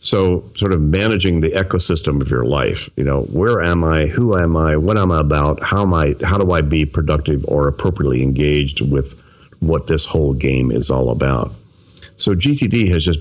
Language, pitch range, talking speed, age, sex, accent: English, 75-95 Hz, 200 wpm, 50-69, male, American